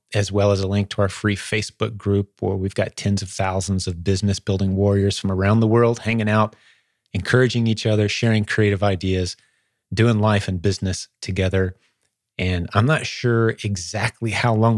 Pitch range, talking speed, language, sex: 95-115 Hz, 175 wpm, English, male